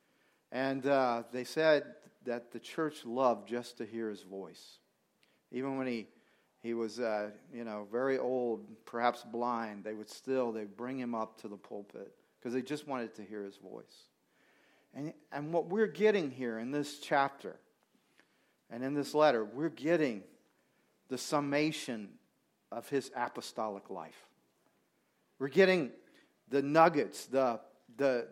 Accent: American